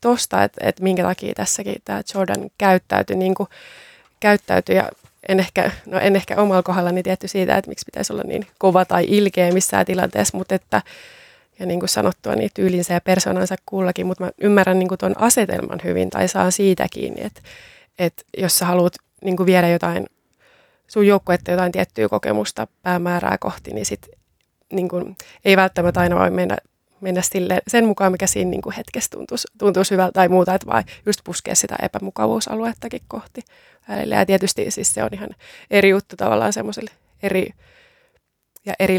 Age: 20-39